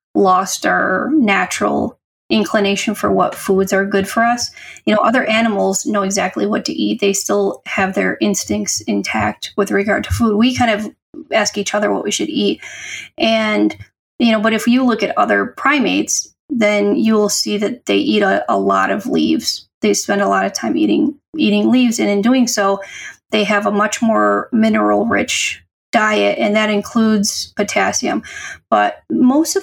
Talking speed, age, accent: 180 wpm, 30-49, American